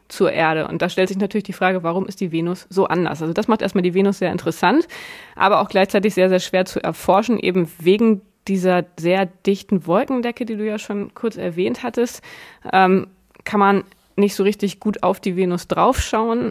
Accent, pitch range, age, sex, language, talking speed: German, 185-215 Hz, 20-39, female, German, 200 wpm